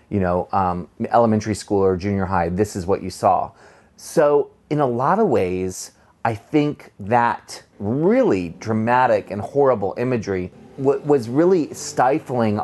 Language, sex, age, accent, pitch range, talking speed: English, male, 30-49, American, 100-125 Hz, 140 wpm